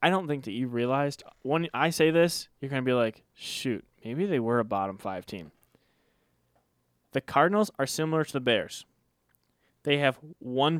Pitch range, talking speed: 115-140 Hz, 185 wpm